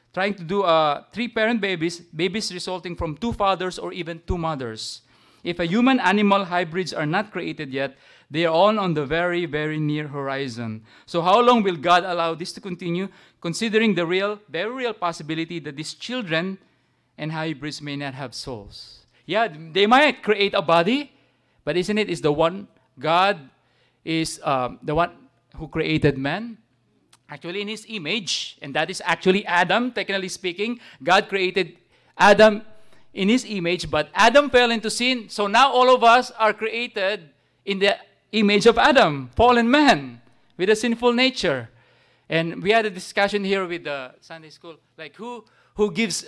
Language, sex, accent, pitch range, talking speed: English, male, Filipino, 150-210 Hz, 170 wpm